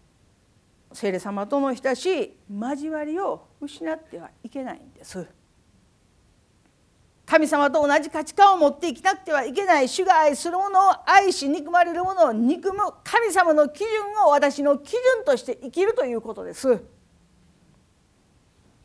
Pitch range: 235-370 Hz